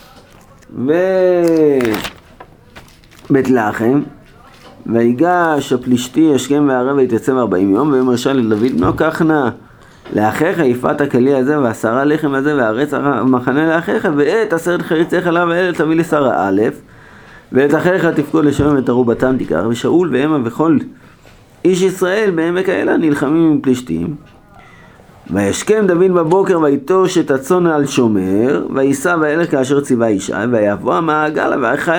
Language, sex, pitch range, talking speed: Hebrew, male, 135-200 Hz, 120 wpm